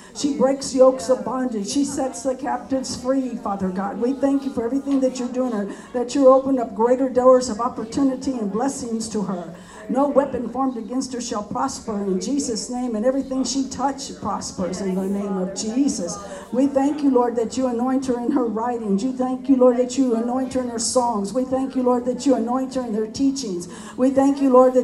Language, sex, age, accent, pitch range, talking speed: English, female, 60-79, American, 240-280 Hz, 220 wpm